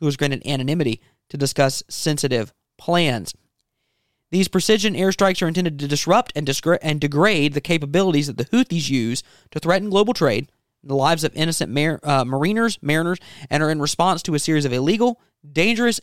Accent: American